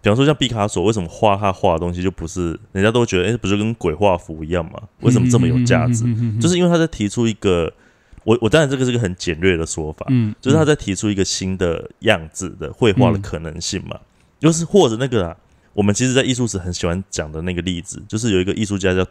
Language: Chinese